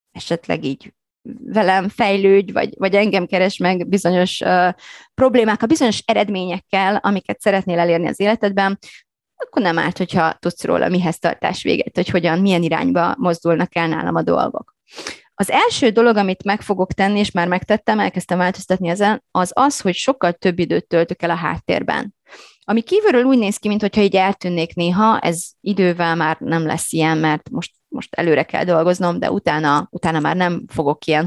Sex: female